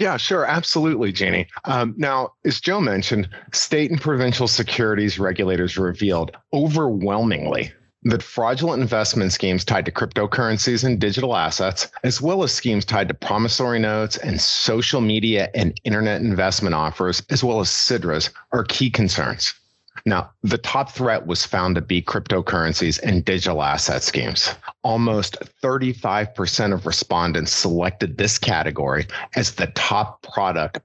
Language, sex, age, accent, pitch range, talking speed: English, male, 30-49, American, 90-120 Hz, 140 wpm